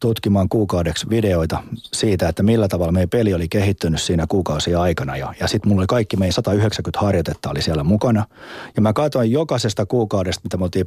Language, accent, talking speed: Finnish, native, 190 wpm